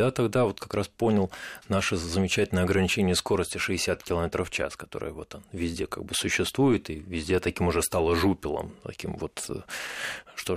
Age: 30-49